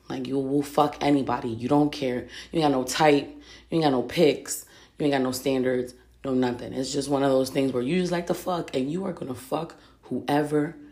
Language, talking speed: English, 240 wpm